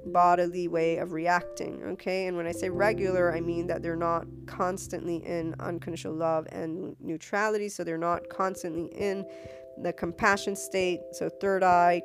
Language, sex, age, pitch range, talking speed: English, female, 20-39, 165-180 Hz, 160 wpm